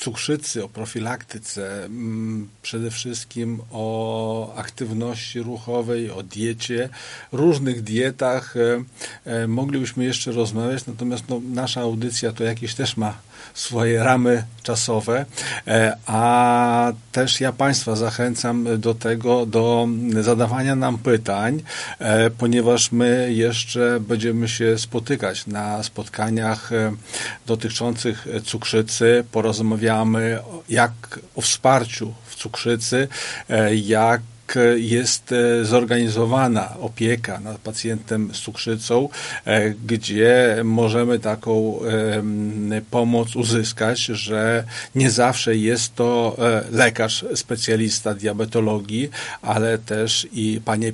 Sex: male